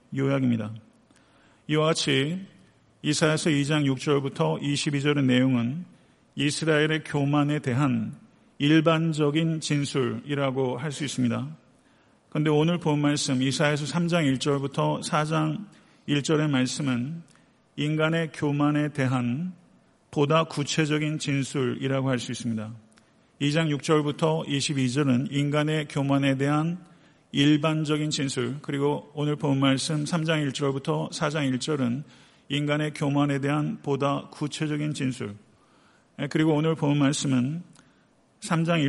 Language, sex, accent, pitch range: Korean, male, native, 135-155 Hz